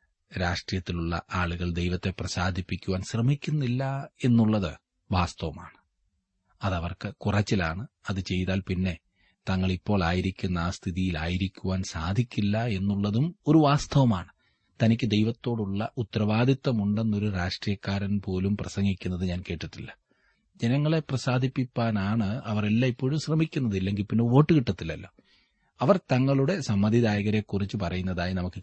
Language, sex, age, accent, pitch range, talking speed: Malayalam, male, 30-49, native, 90-120 Hz, 90 wpm